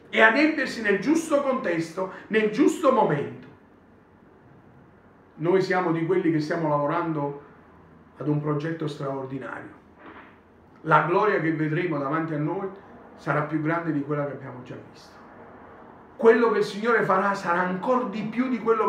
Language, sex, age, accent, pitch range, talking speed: Italian, male, 40-59, native, 185-235 Hz, 150 wpm